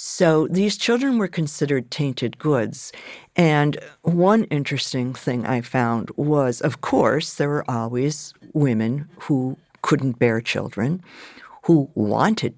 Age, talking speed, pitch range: 60-79, 125 wpm, 120-150 Hz